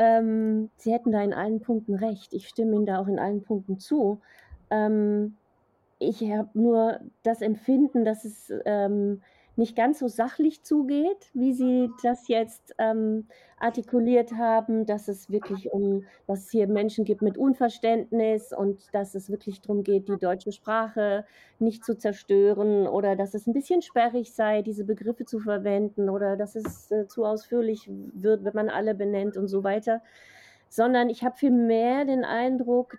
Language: German